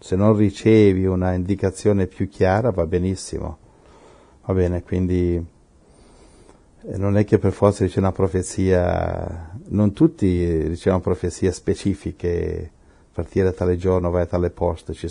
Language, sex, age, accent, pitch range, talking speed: Italian, male, 50-69, native, 90-100 Hz, 135 wpm